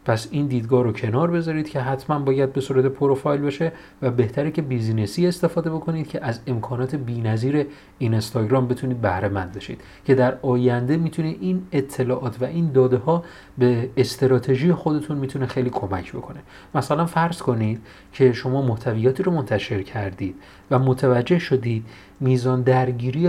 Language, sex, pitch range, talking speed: Persian, male, 110-145 Hz, 155 wpm